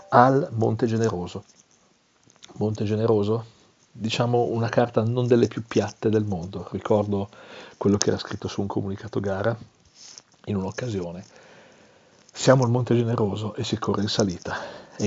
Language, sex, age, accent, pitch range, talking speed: Italian, male, 40-59, native, 95-110 Hz, 135 wpm